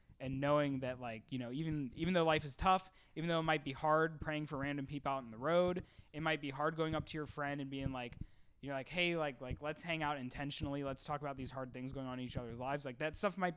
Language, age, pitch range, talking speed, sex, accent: English, 20-39, 120-155 Hz, 285 wpm, male, American